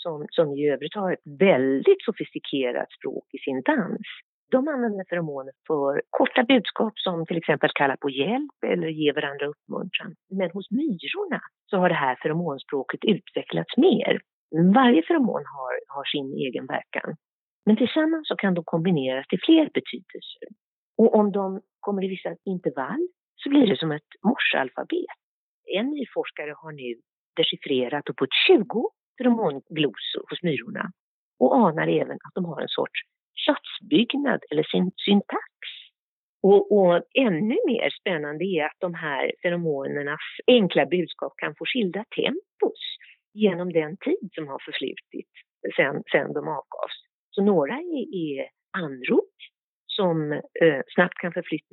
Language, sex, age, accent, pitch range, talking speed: Swedish, female, 50-69, native, 160-265 Hz, 145 wpm